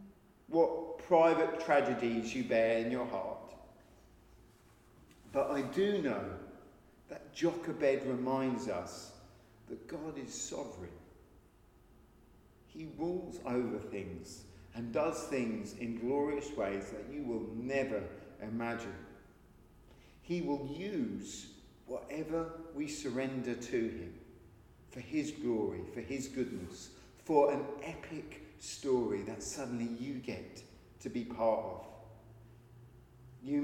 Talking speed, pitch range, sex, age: 110 wpm, 115-170 Hz, male, 40-59